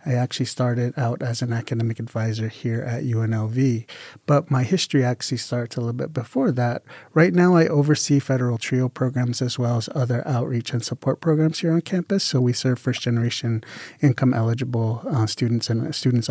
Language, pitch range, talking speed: English, 115-135 Hz, 175 wpm